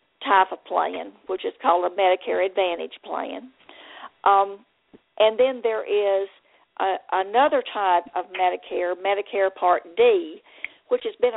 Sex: female